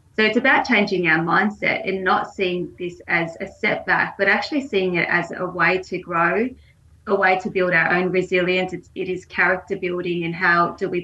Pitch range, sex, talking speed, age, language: 180-205 Hz, female, 205 wpm, 20-39, English